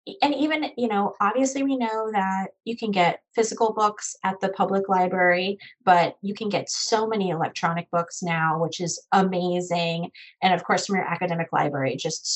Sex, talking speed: female, 180 wpm